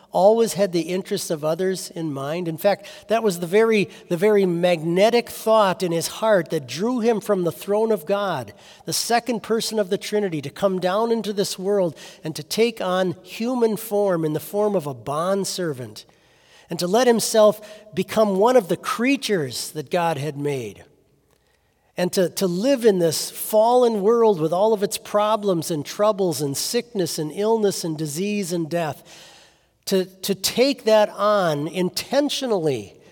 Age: 50-69